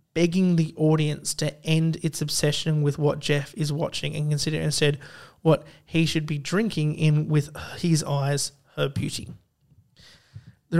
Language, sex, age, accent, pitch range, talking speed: English, male, 30-49, Australian, 145-165 Hz, 150 wpm